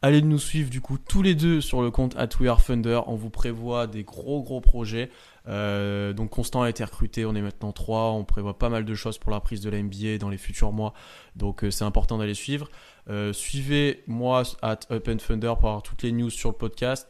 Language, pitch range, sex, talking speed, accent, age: French, 105-125 Hz, male, 240 wpm, French, 20-39